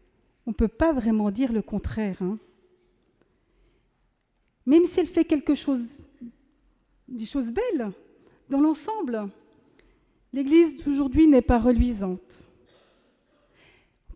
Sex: female